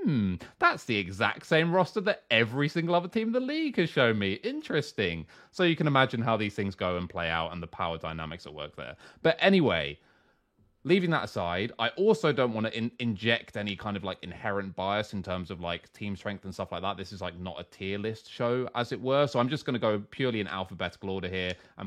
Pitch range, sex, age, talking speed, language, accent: 90-130 Hz, male, 30-49, 235 wpm, English, British